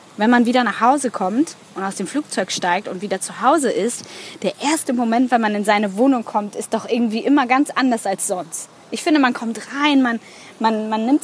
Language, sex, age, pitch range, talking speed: German, female, 20-39, 200-250 Hz, 225 wpm